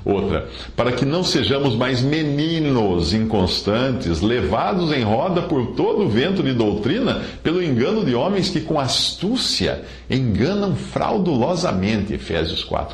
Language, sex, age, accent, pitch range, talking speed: Portuguese, male, 50-69, Brazilian, 85-130 Hz, 125 wpm